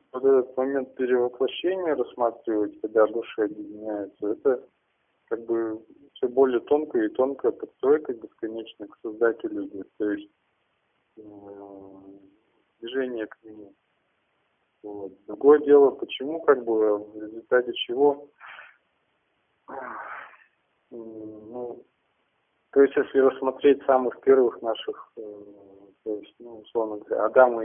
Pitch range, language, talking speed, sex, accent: 110-150 Hz, Russian, 110 wpm, male, native